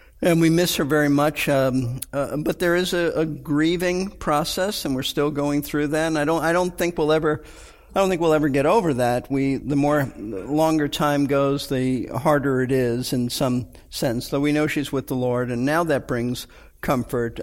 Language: English